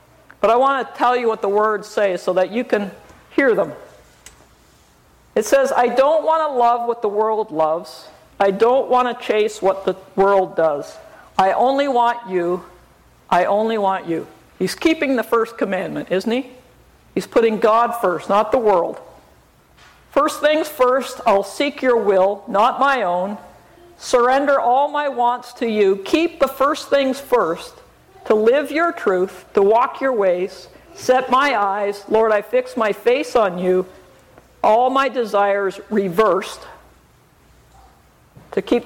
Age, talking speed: 50-69, 160 wpm